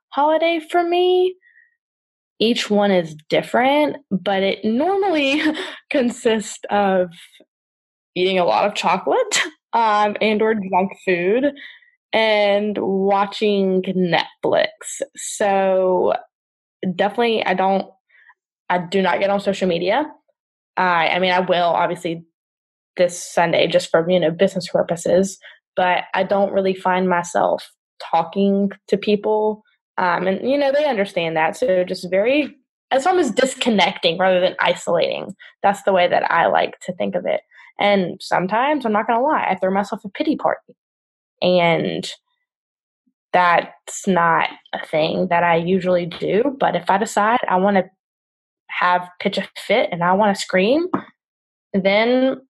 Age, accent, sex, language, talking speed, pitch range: 10-29, American, female, English, 145 wpm, 180-250 Hz